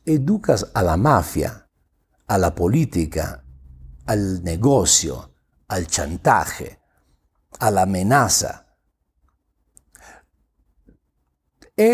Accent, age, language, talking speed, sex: Italian, 60-79, Spanish, 75 wpm, male